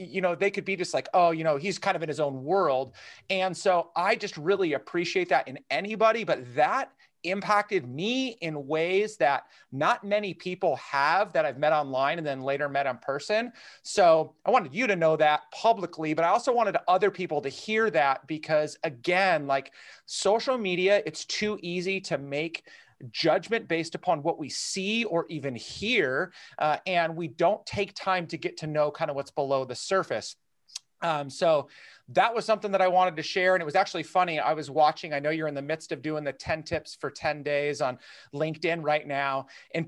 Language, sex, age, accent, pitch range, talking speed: English, male, 30-49, American, 150-190 Hz, 205 wpm